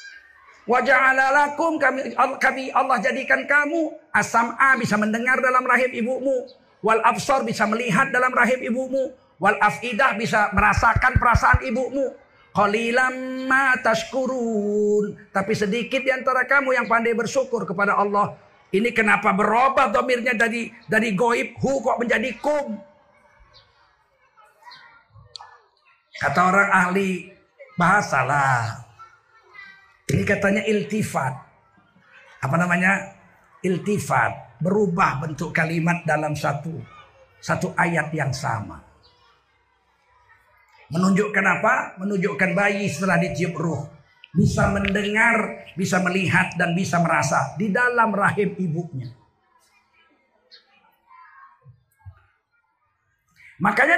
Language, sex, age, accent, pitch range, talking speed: Indonesian, male, 50-69, native, 185-265 Hz, 90 wpm